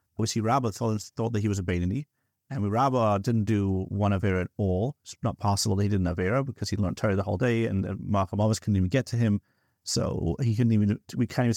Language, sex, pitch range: English, male, 100-120 Hz